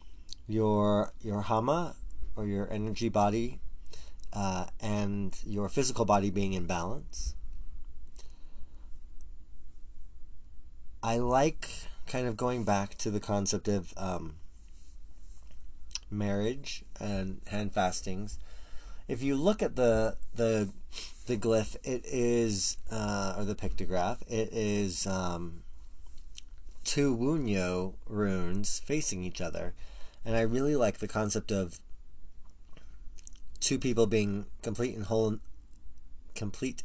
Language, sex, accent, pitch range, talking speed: English, male, American, 75-110 Hz, 110 wpm